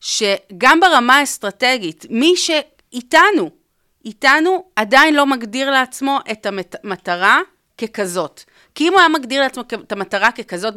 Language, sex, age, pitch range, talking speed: Hebrew, female, 30-49, 210-280 Hz, 125 wpm